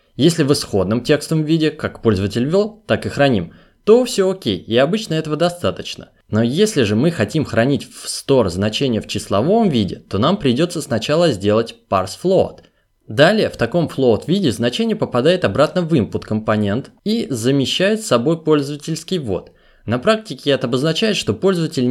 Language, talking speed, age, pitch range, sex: Russian, 165 wpm, 20-39, 115-165 Hz, male